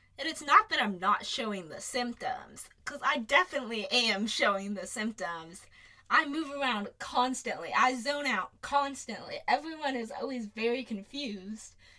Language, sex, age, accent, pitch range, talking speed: English, female, 10-29, American, 200-255 Hz, 145 wpm